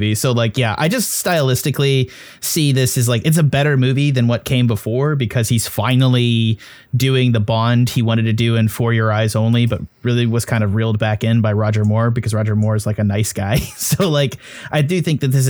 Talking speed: 230 wpm